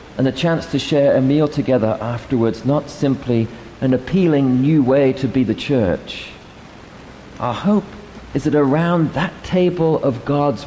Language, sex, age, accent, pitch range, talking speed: English, male, 40-59, British, 115-145 Hz, 155 wpm